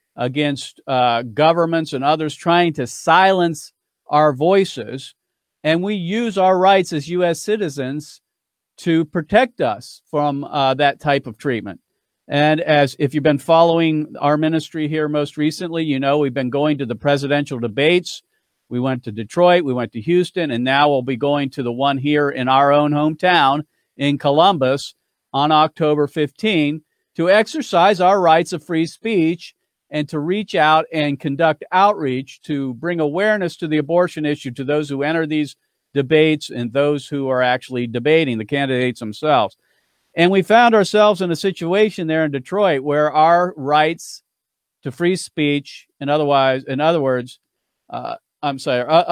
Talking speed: 160 wpm